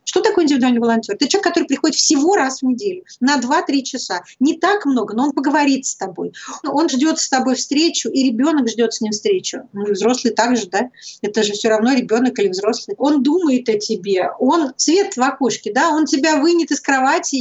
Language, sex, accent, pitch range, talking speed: Russian, female, native, 230-295 Hz, 205 wpm